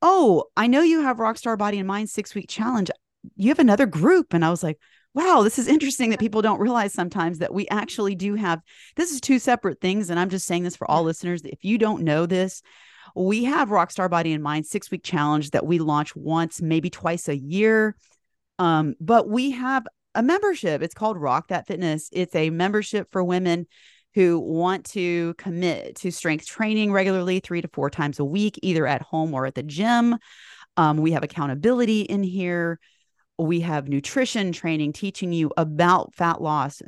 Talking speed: 195 wpm